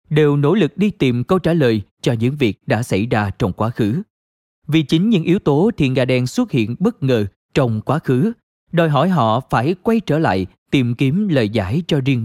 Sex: male